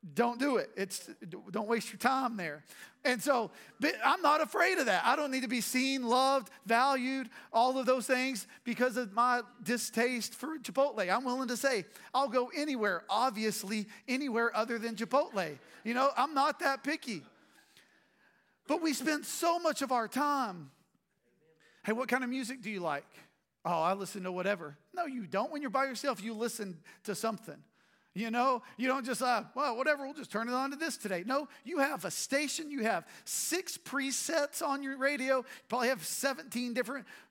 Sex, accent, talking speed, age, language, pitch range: male, American, 190 wpm, 40-59, English, 190-265 Hz